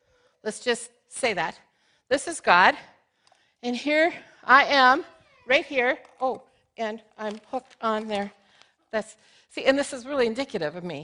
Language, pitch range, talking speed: English, 245-315 Hz, 150 wpm